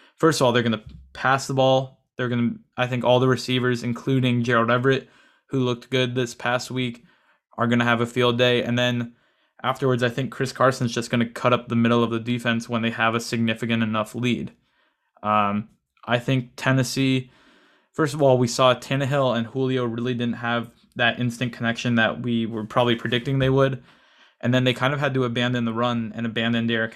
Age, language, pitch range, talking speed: 20-39, English, 115-130 Hz, 210 wpm